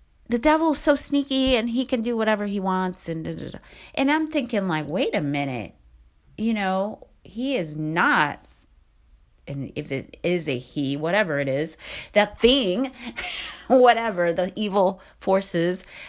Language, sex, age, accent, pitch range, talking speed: English, female, 30-49, American, 150-205 Hz, 150 wpm